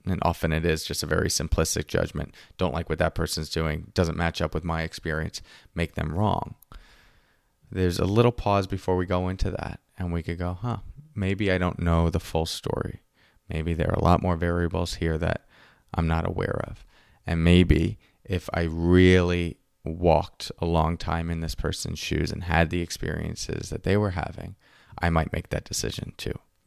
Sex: male